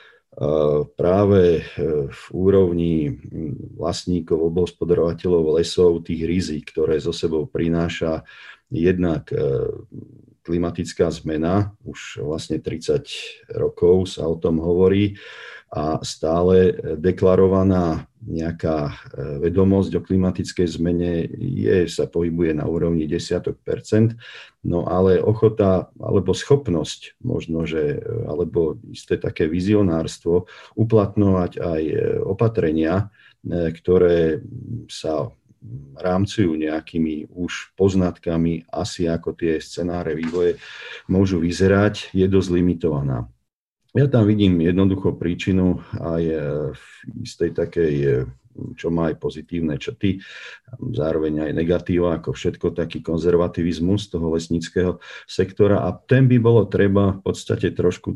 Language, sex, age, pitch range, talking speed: Slovak, male, 50-69, 85-100 Hz, 100 wpm